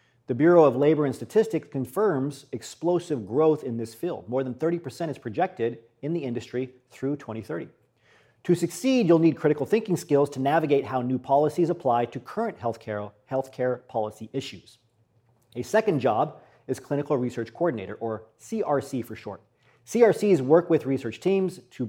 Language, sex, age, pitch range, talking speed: English, male, 40-59, 120-165 Hz, 160 wpm